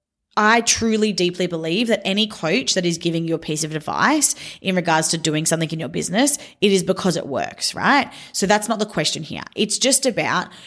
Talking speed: 215 wpm